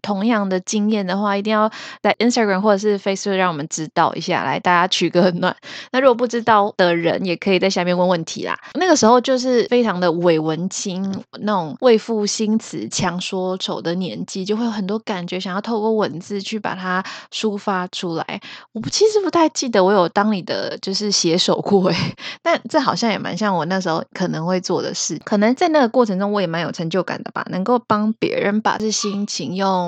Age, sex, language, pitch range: 20-39, female, Chinese, 180-220 Hz